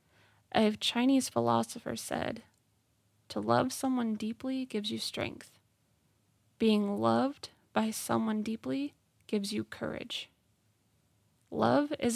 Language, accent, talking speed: English, American, 105 wpm